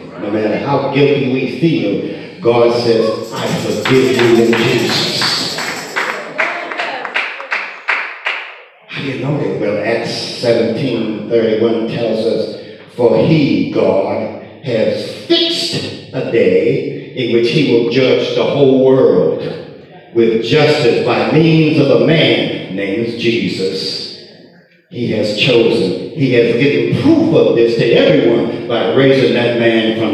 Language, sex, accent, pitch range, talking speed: English, male, American, 115-165 Hz, 125 wpm